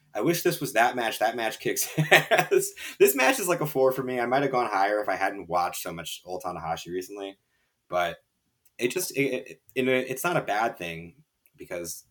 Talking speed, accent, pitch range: 215 wpm, American, 85-120 Hz